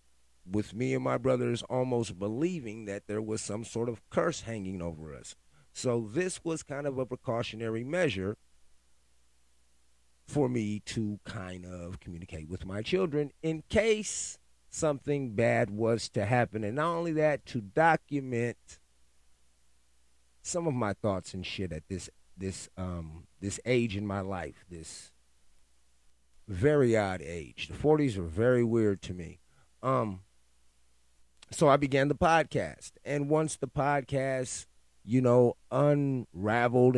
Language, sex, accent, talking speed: English, male, American, 140 wpm